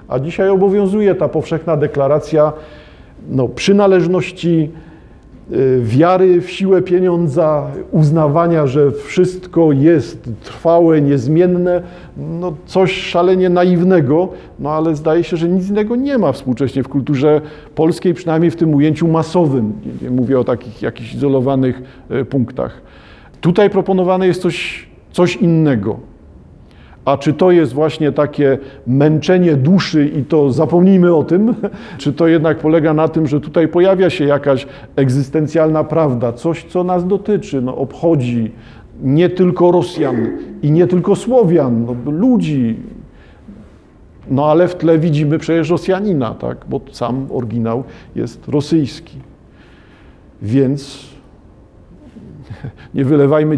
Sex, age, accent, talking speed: male, 50-69, native, 120 wpm